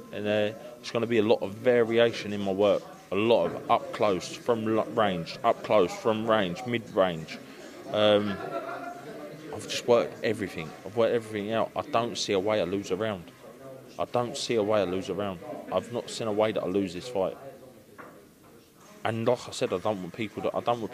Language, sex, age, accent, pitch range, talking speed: English, male, 20-39, British, 100-115 Hz, 215 wpm